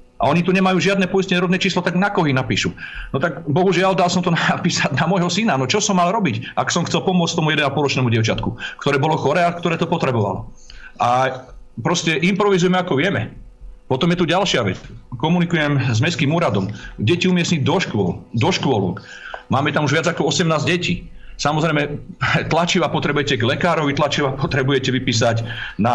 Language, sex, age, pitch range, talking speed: Slovak, male, 40-59, 115-175 Hz, 175 wpm